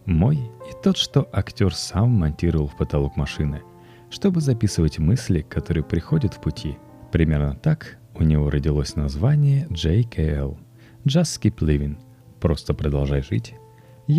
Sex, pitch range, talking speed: male, 75-120 Hz, 125 wpm